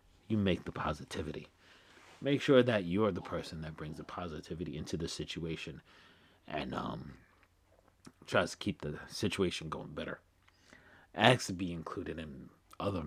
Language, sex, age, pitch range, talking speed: English, male, 30-49, 85-110 Hz, 145 wpm